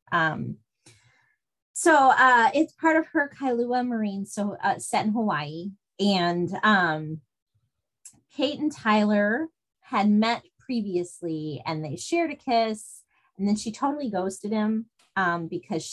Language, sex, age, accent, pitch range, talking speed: English, female, 30-49, American, 175-235 Hz, 130 wpm